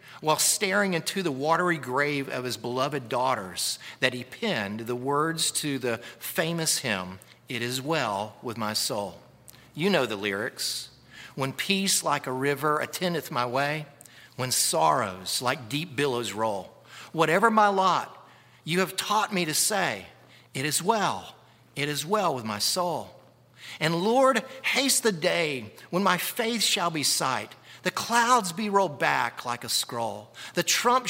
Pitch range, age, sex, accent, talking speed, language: 120-180 Hz, 50-69, male, American, 160 wpm, English